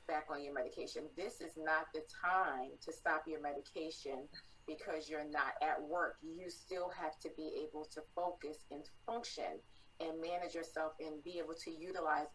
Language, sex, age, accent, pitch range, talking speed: English, female, 30-49, American, 155-180 Hz, 175 wpm